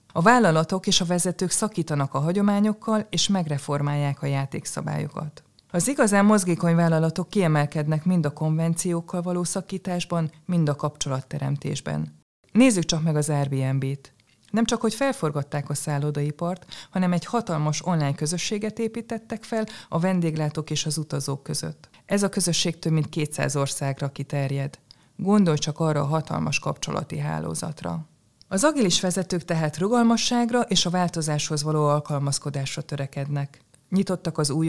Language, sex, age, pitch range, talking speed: Hungarian, female, 20-39, 145-185 Hz, 140 wpm